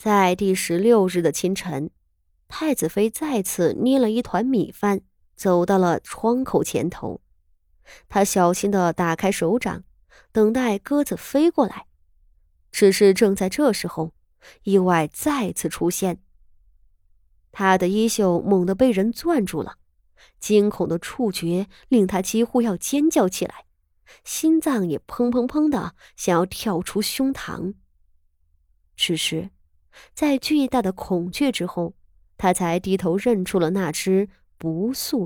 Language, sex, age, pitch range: Chinese, female, 20-39, 150-220 Hz